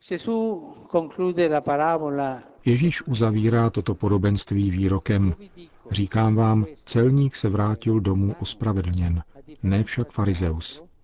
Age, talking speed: 50-69, 80 wpm